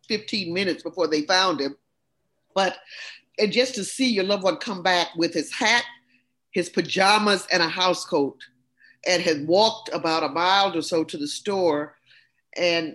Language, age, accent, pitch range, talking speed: English, 50-69, American, 165-210 Hz, 170 wpm